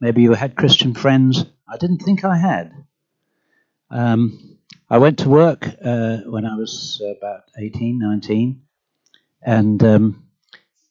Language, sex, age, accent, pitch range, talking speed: English, male, 60-79, British, 115-160 Hz, 130 wpm